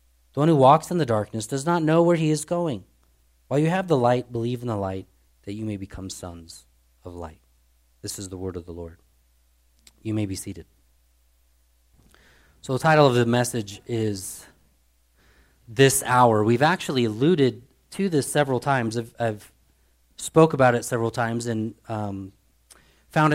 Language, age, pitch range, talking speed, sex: English, 30-49, 90-135 Hz, 170 wpm, male